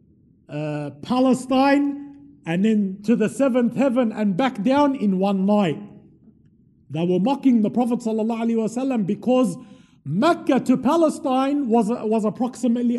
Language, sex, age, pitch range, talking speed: English, male, 50-69, 190-275 Hz, 130 wpm